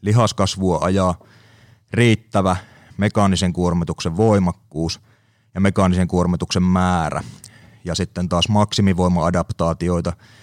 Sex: male